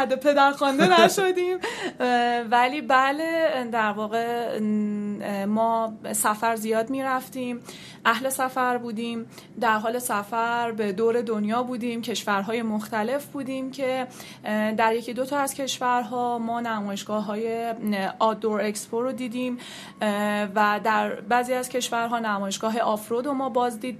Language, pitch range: Persian, 220-260 Hz